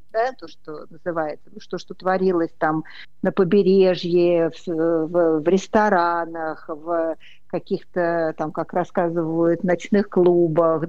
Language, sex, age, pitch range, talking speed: Russian, female, 50-69, 170-205 Hz, 110 wpm